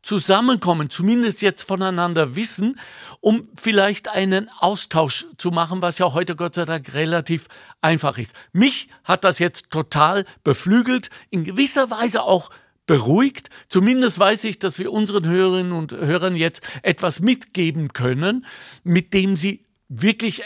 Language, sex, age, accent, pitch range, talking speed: German, male, 60-79, German, 135-195 Hz, 140 wpm